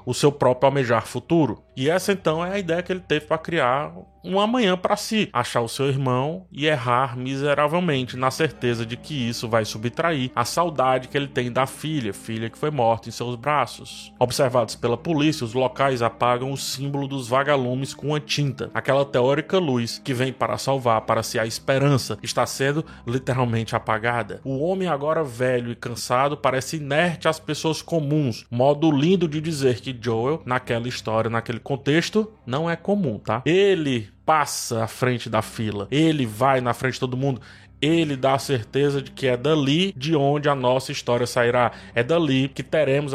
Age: 20-39